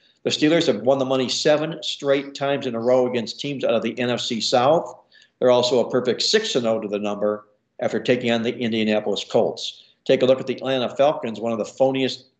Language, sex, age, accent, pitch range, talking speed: English, male, 60-79, American, 110-135 Hz, 215 wpm